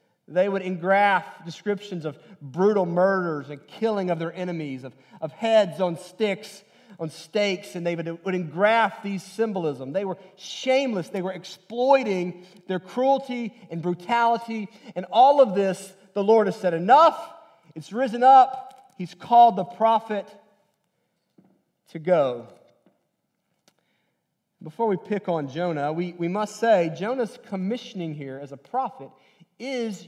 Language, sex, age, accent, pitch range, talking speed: English, male, 40-59, American, 180-240 Hz, 140 wpm